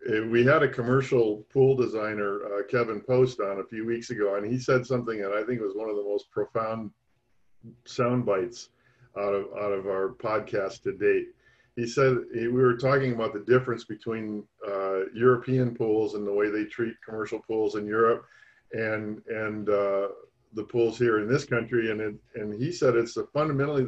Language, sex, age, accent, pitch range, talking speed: English, male, 50-69, American, 110-130 Hz, 190 wpm